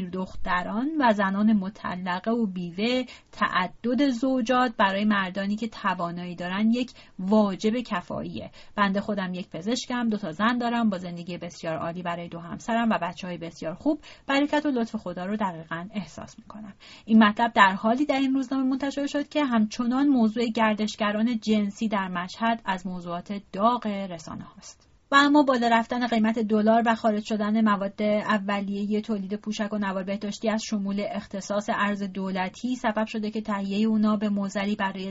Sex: female